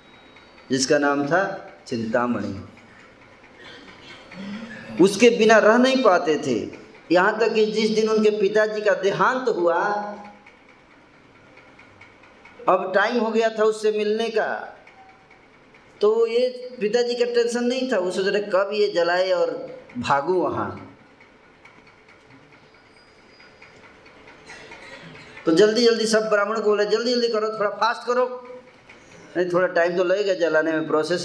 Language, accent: Hindi, native